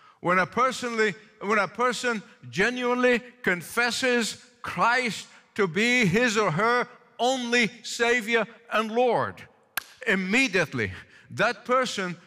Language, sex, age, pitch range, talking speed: English, male, 50-69, 205-245 Hz, 95 wpm